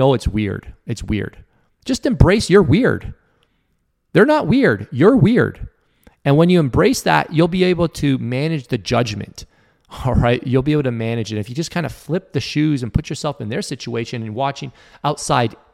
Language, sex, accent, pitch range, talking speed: English, male, American, 115-160 Hz, 195 wpm